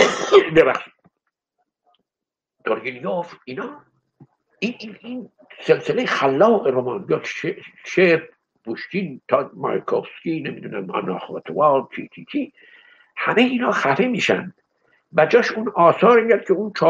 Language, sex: English, male